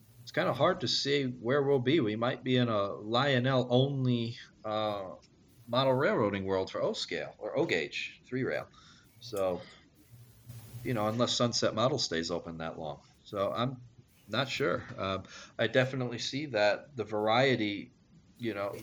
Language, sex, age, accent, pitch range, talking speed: English, male, 40-59, American, 95-120 Hz, 145 wpm